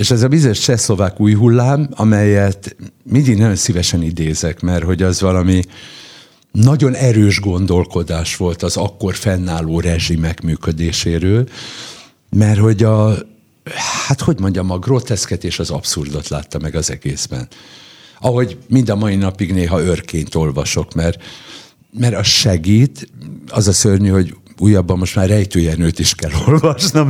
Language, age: Hungarian, 60-79